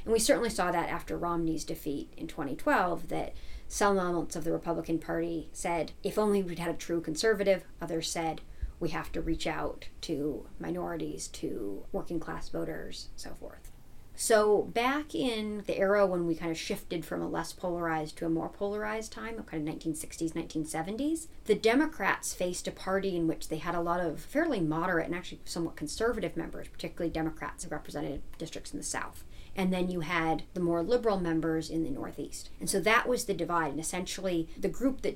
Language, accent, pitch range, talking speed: English, American, 165-205 Hz, 195 wpm